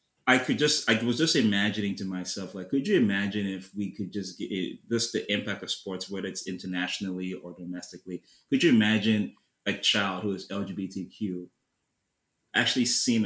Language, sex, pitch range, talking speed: English, male, 95-110 Hz, 170 wpm